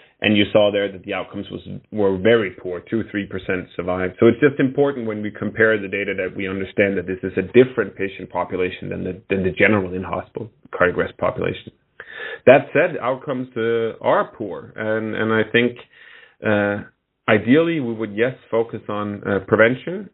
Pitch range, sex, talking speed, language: 100-120 Hz, male, 180 wpm, English